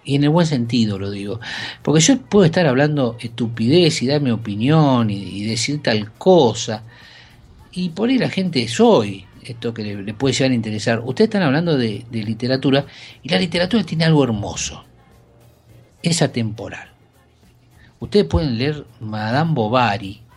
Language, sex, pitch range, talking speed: Spanish, male, 110-135 Hz, 165 wpm